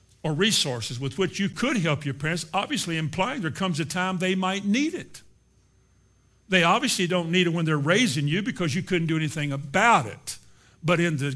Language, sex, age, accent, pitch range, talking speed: English, male, 50-69, American, 145-185 Hz, 200 wpm